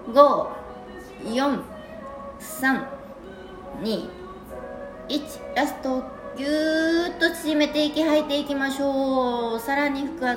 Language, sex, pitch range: Japanese, female, 215-285 Hz